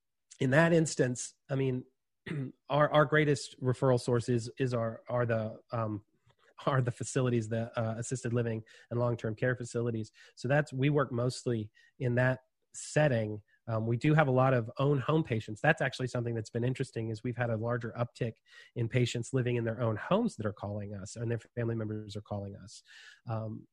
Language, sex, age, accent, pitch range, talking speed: English, male, 30-49, American, 115-130 Hz, 200 wpm